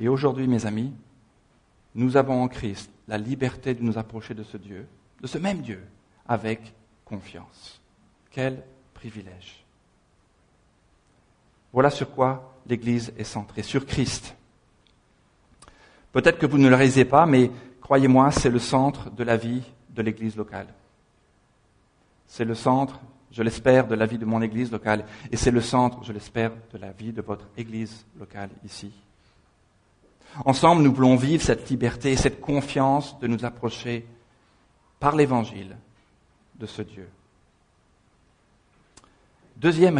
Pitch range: 105-135 Hz